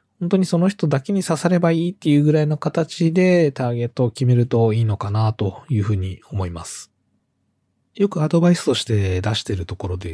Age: 20-39